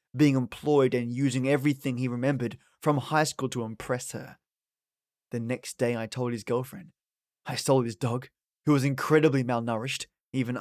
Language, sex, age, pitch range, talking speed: English, male, 20-39, 125-150 Hz, 165 wpm